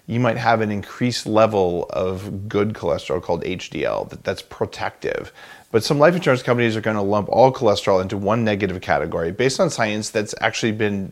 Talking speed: 185 wpm